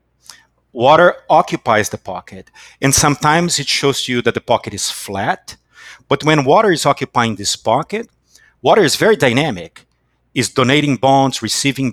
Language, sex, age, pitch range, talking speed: English, male, 50-69, 105-145 Hz, 145 wpm